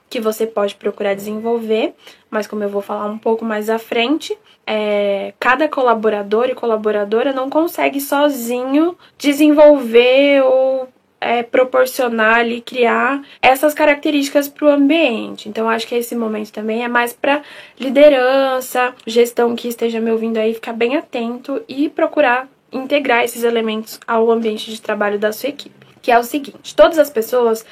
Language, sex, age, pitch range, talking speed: Portuguese, female, 10-29, 225-280 Hz, 150 wpm